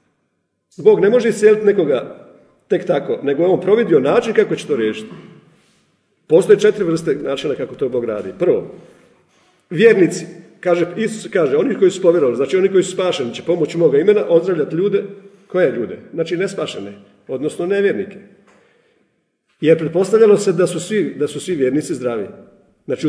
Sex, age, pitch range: male, 50-69, 170-225 Hz